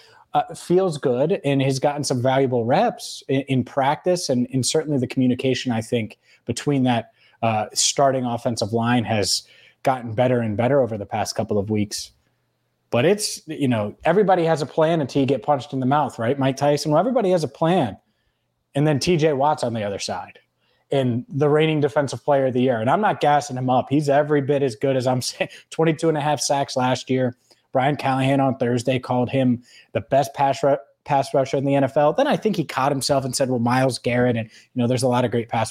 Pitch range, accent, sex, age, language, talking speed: 125-150 Hz, American, male, 30-49, English, 215 wpm